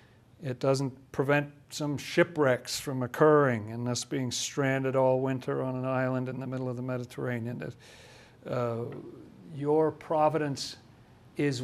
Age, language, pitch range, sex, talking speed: 50-69, English, 125-145 Hz, male, 135 wpm